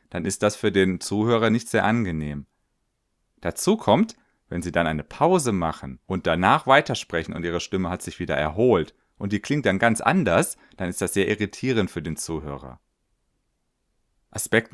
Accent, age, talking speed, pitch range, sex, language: German, 30-49, 170 wpm, 90-115 Hz, male, German